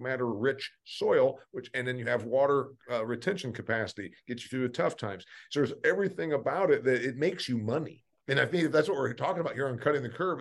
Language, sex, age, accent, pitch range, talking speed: English, male, 50-69, American, 120-150 Hz, 235 wpm